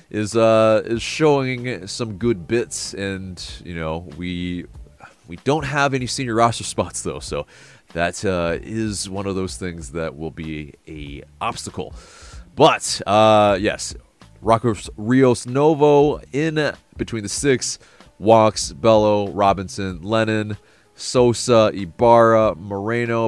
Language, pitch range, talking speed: English, 90-115 Hz, 125 wpm